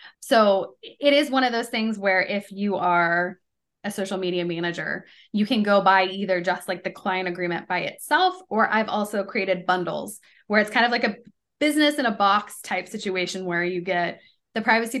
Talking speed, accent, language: 195 wpm, American, English